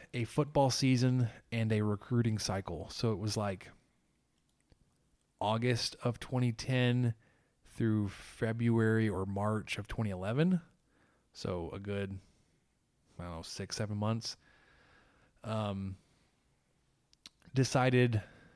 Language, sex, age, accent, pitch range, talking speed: English, male, 20-39, American, 100-115 Hz, 100 wpm